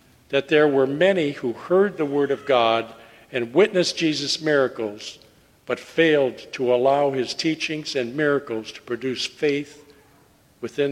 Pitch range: 130-160 Hz